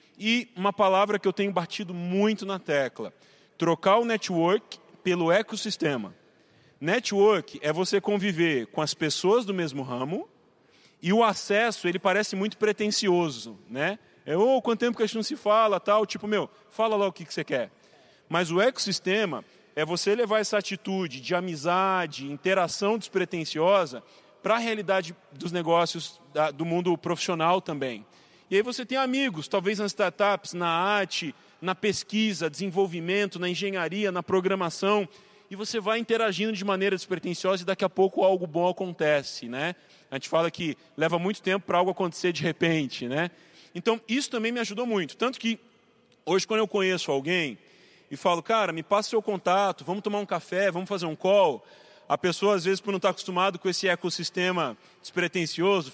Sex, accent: male, Brazilian